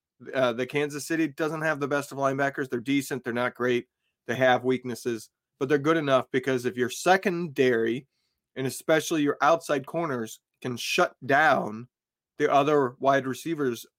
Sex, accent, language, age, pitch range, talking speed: male, American, English, 40-59, 130-155 Hz, 165 wpm